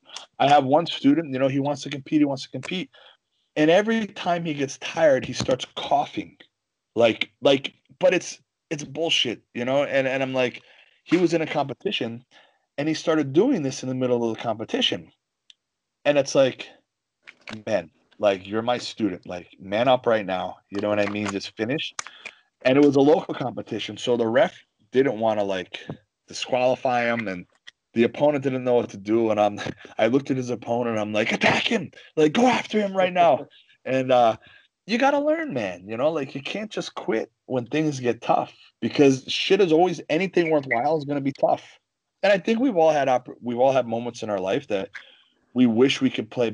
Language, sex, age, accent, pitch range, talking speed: English, male, 30-49, American, 115-155 Hz, 205 wpm